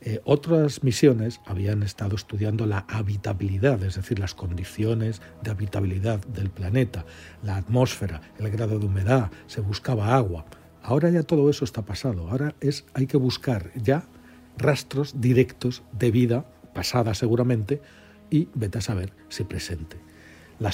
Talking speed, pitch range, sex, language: 145 wpm, 95-130 Hz, male, Spanish